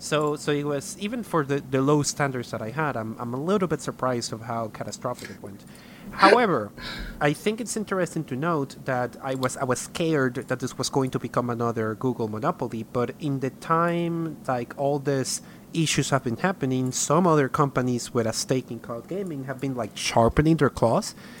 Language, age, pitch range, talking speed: English, 30-49, 120-155 Hz, 200 wpm